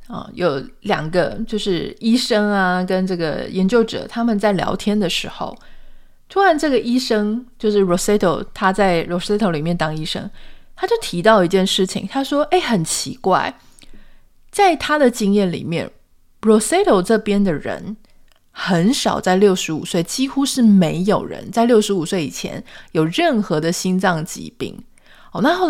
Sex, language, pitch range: female, Chinese, 185-250 Hz